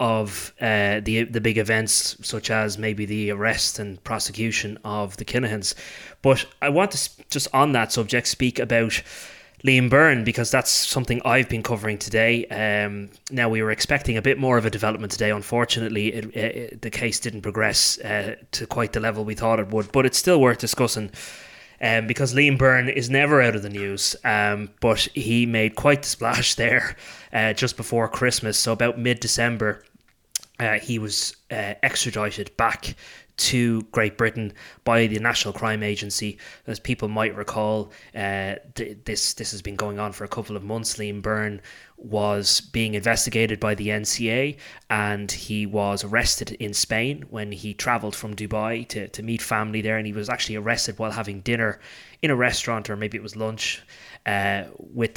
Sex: male